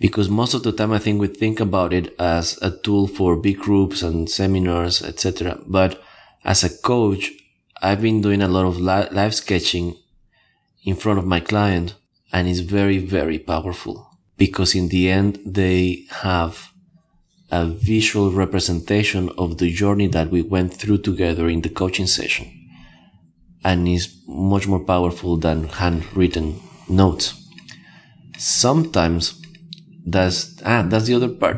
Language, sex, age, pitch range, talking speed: English, male, 20-39, 90-105 Hz, 150 wpm